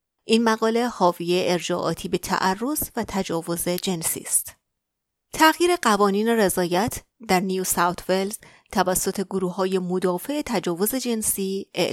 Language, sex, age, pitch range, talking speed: Persian, female, 30-49, 180-230 Hz, 110 wpm